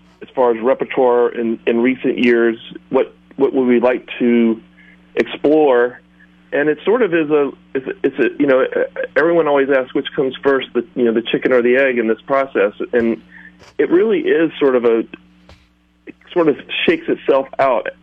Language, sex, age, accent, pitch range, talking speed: English, male, 40-59, American, 100-135 Hz, 190 wpm